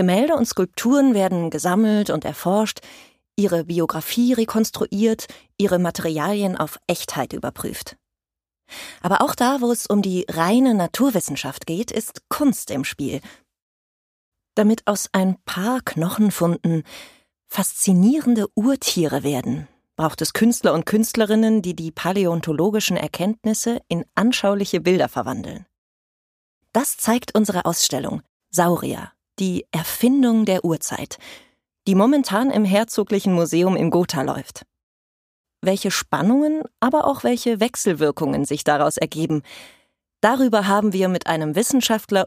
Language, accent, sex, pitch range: German, German, female, 165-225 Hz